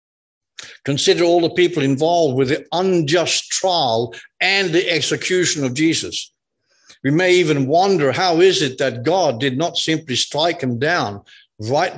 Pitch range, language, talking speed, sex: 130-175 Hz, English, 150 wpm, male